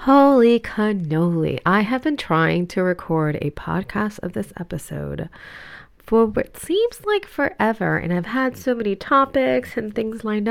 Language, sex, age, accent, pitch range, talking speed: English, female, 30-49, American, 170-245 Hz, 155 wpm